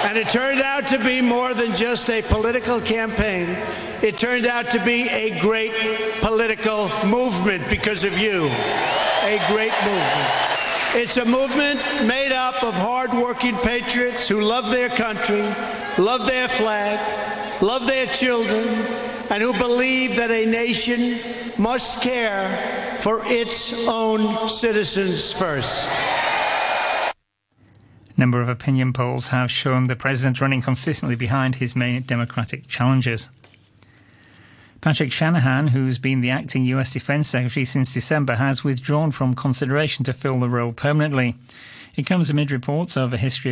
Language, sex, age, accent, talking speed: English, male, 60-79, American, 140 wpm